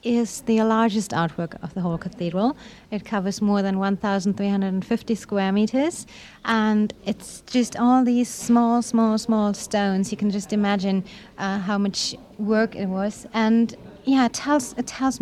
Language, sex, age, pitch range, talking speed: English, female, 40-59, 195-230 Hz, 160 wpm